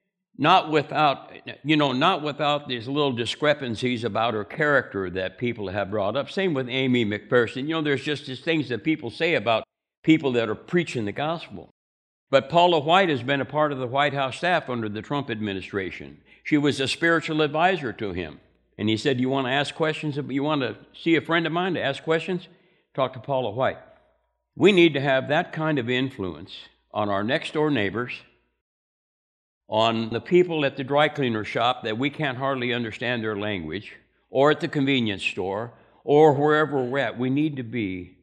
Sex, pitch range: male, 105-150 Hz